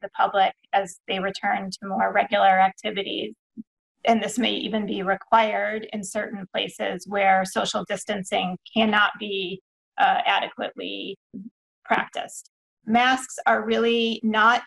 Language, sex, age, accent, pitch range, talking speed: English, female, 30-49, American, 200-230 Hz, 125 wpm